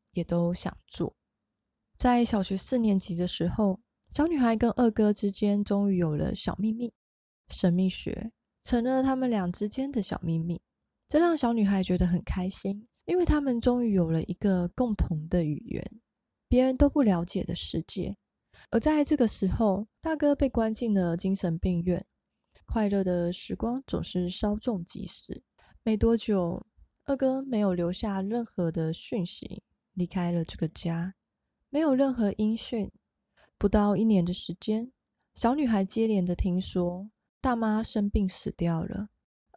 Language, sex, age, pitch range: Chinese, female, 20-39, 180-230 Hz